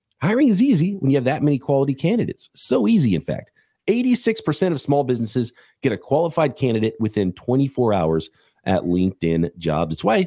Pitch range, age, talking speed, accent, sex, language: 110-175 Hz, 40-59, 175 wpm, American, male, English